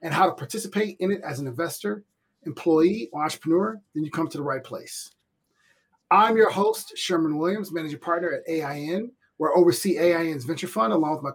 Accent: American